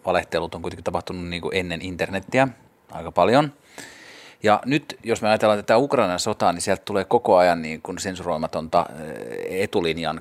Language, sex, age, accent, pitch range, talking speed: Finnish, male, 30-49, native, 85-110 Hz, 160 wpm